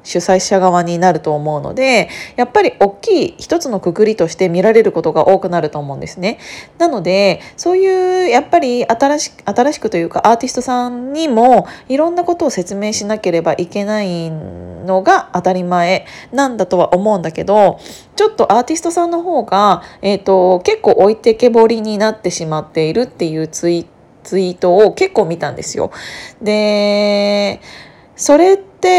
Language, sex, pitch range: Japanese, female, 180-255 Hz